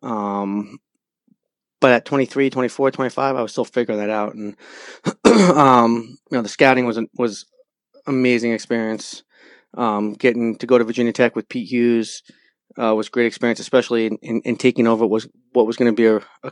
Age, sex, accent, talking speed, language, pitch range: 30-49, male, American, 190 wpm, English, 110-130 Hz